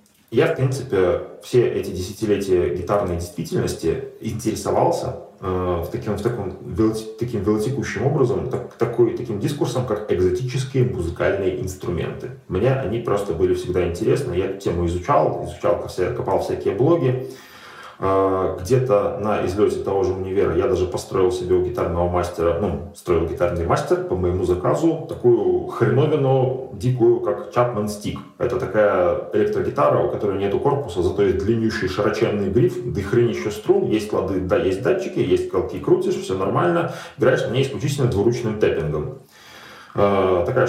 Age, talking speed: 30-49, 130 wpm